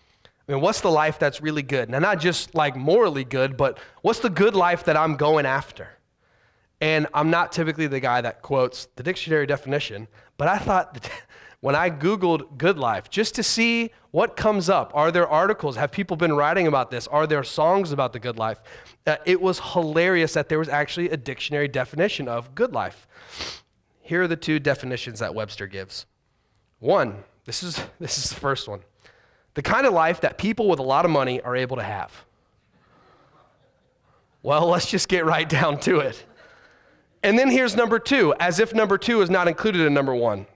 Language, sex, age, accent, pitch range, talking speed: English, male, 30-49, American, 130-180 Hz, 195 wpm